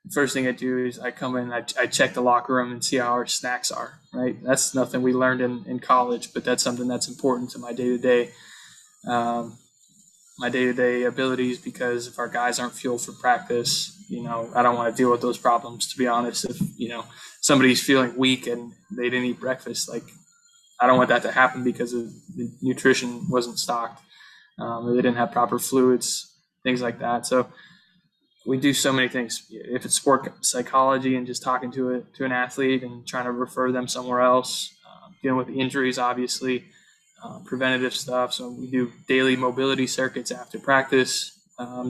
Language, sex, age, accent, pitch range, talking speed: English, male, 20-39, American, 125-130 Hz, 195 wpm